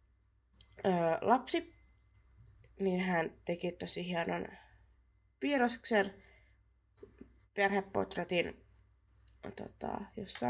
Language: Finnish